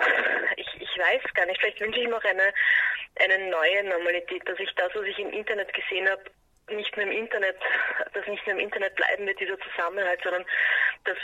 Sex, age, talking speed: female, 30-49, 200 wpm